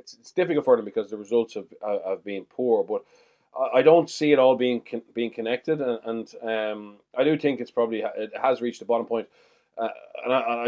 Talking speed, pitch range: 210 wpm, 110-140 Hz